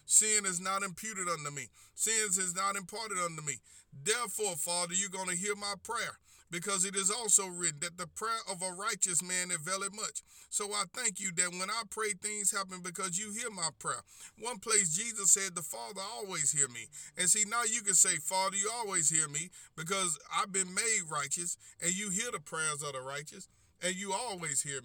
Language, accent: English, American